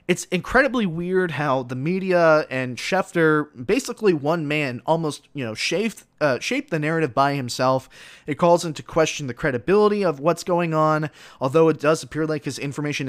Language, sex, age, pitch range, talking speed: English, male, 20-39, 135-175 Hz, 175 wpm